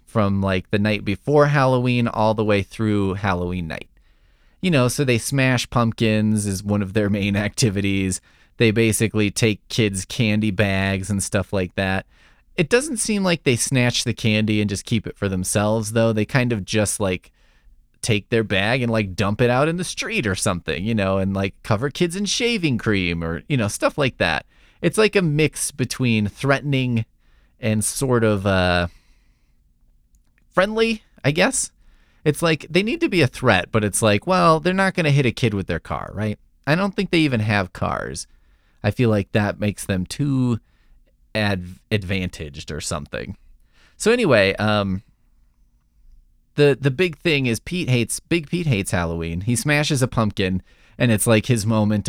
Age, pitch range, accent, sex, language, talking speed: 30-49, 95-125 Hz, American, male, English, 185 wpm